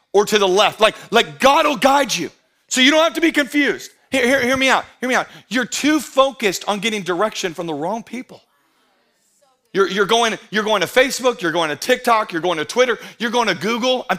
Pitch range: 150-235 Hz